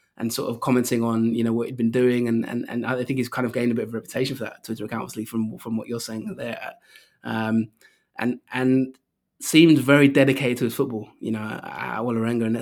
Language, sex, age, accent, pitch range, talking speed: English, male, 20-39, British, 115-130 Hz, 235 wpm